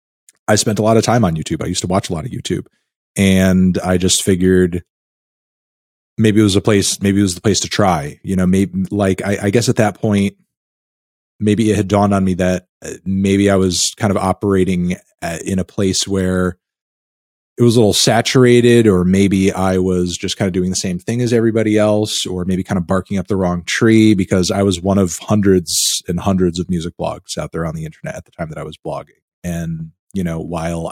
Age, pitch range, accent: 30-49, 90-105 Hz, American